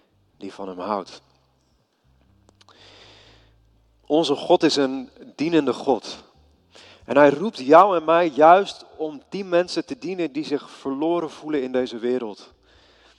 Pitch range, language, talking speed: 115-155 Hz, Dutch, 130 wpm